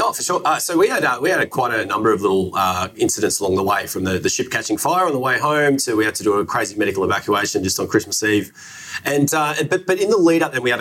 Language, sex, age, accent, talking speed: English, male, 30-49, Australian, 300 wpm